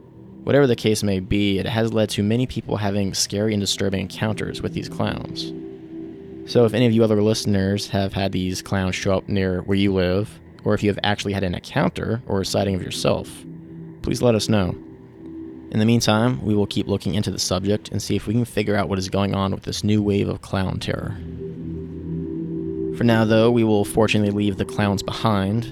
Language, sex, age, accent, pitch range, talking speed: English, male, 20-39, American, 90-105 Hz, 210 wpm